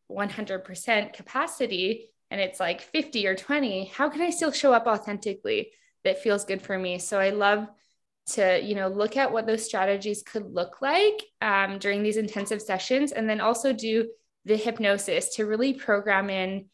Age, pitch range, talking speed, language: 20-39, 200-240 Hz, 170 wpm, English